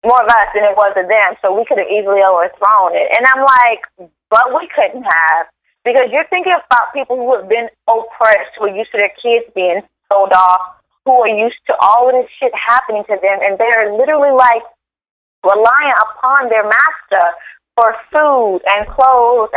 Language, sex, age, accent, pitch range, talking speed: English, female, 30-49, American, 220-295 Hz, 195 wpm